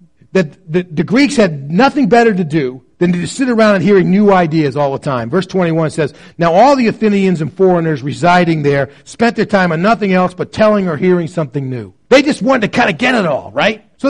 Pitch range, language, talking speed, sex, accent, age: 160-215 Hz, English, 225 wpm, male, American, 40-59